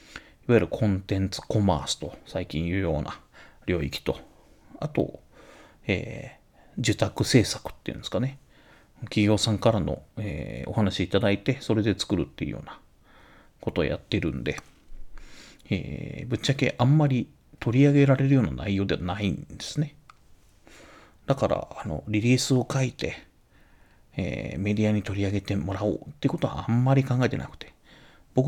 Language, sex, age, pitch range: Japanese, male, 40-59, 95-135 Hz